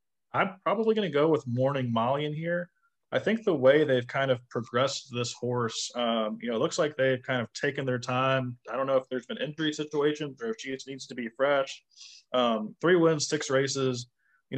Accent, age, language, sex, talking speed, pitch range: American, 20-39, English, male, 220 wpm, 120-145 Hz